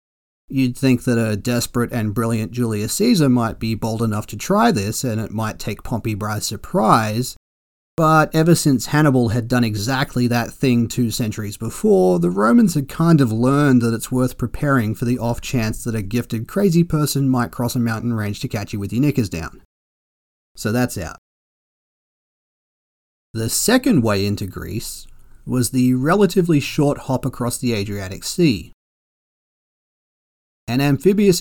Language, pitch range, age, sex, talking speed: English, 105-140 Hz, 30-49, male, 160 wpm